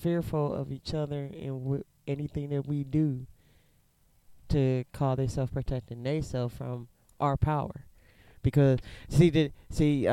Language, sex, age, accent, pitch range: Japanese, male, 20-39, American, 130-185 Hz